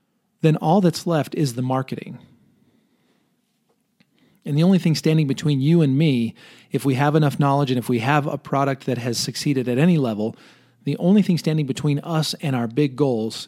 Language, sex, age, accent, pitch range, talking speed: English, male, 40-59, American, 120-150 Hz, 190 wpm